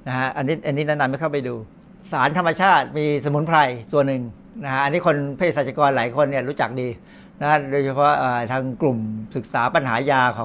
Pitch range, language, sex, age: 135-180 Hz, Thai, male, 60-79